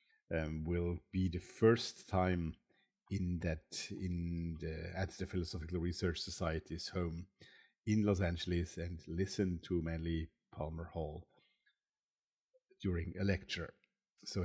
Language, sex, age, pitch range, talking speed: English, male, 50-69, 90-110 Hz, 120 wpm